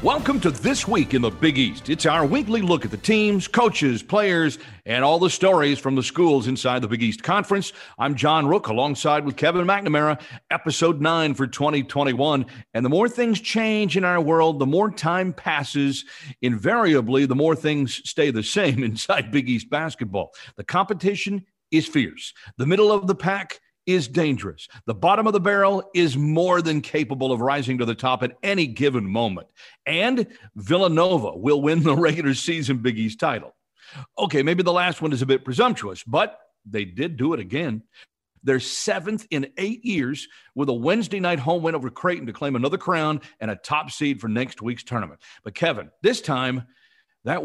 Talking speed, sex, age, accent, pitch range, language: 185 wpm, male, 40-59, American, 130-180 Hz, English